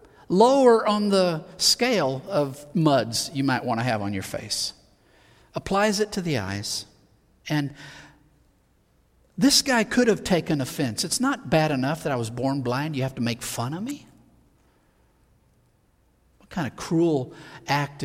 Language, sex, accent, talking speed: English, male, American, 155 wpm